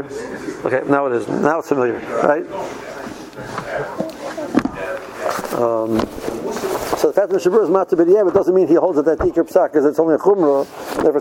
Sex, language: male, English